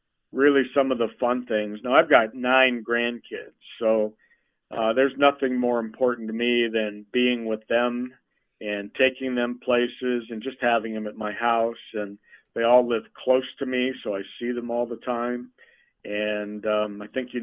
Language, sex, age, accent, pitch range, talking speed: English, male, 50-69, American, 110-130 Hz, 185 wpm